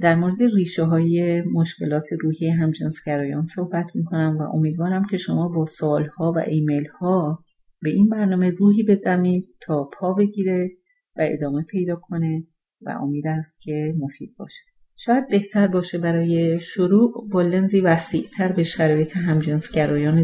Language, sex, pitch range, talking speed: English, female, 150-180 Hz, 140 wpm